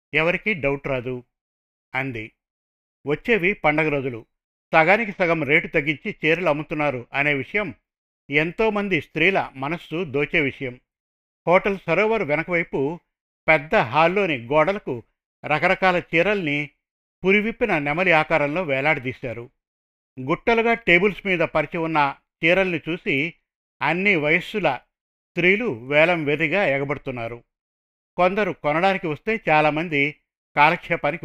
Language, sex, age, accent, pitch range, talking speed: Telugu, male, 50-69, native, 140-180 Hz, 95 wpm